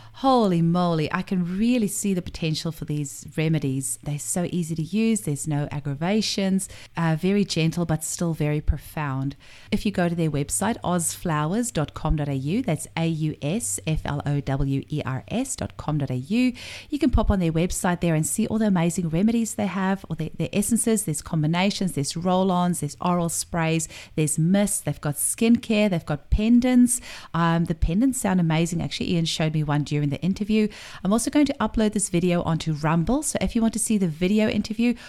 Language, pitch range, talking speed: English, 150-195 Hz, 175 wpm